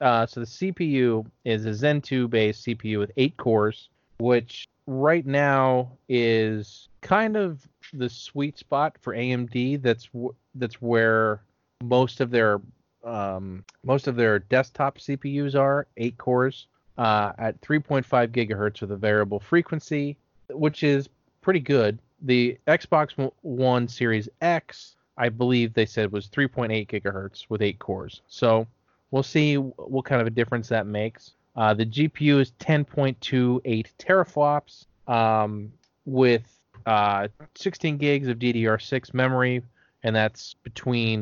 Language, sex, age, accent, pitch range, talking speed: English, male, 30-49, American, 110-140 Hz, 135 wpm